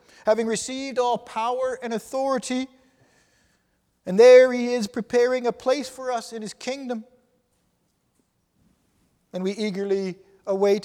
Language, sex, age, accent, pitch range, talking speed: English, male, 50-69, American, 180-235 Hz, 120 wpm